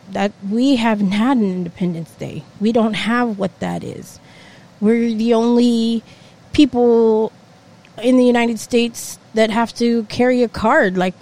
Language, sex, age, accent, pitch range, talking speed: English, female, 20-39, American, 190-235 Hz, 150 wpm